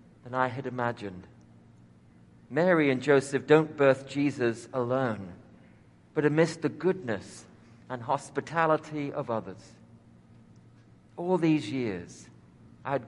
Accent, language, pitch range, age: British, English, 115-150 Hz, 50-69